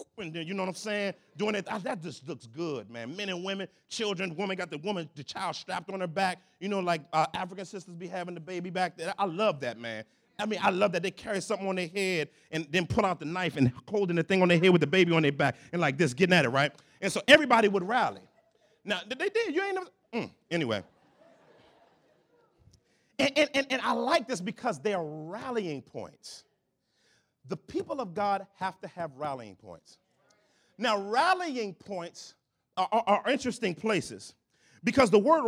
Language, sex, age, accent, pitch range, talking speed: English, male, 40-59, American, 170-225 Hz, 210 wpm